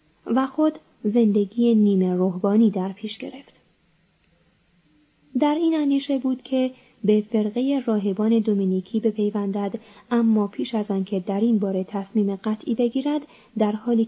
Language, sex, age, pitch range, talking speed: Persian, female, 30-49, 200-245 Hz, 130 wpm